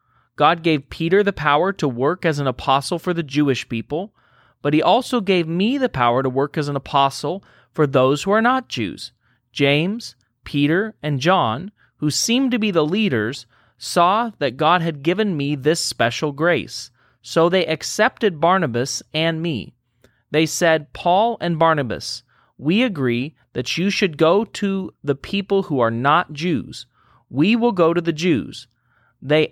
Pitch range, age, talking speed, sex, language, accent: 125-180 Hz, 30-49, 165 wpm, male, English, American